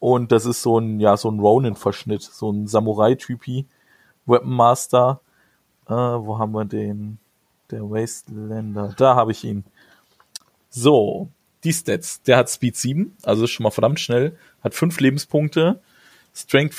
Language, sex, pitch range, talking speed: German, male, 110-140 Hz, 150 wpm